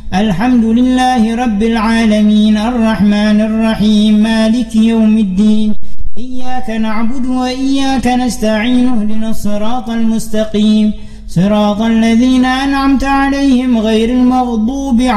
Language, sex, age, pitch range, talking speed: Indonesian, male, 40-59, 210-250 Hz, 85 wpm